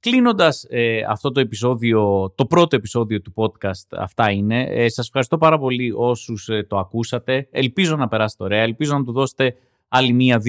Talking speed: 175 wpm